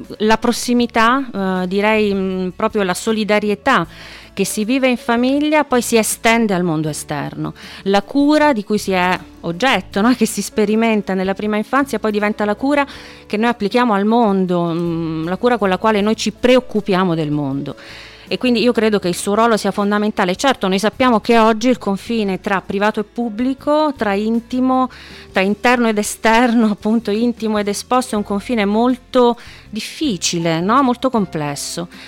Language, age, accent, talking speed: Italian, 30-49, native, 165 wpm